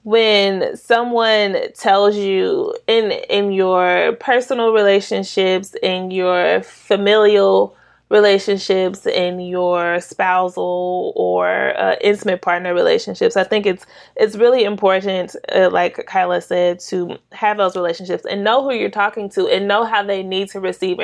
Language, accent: English, American